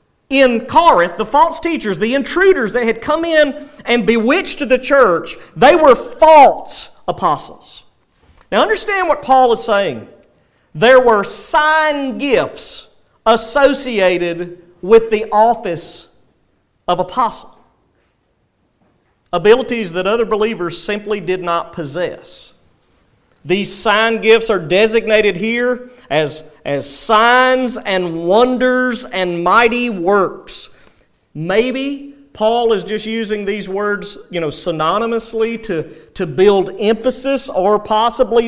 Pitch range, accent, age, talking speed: 185-250 Hz, American, 40-59, 115 wpm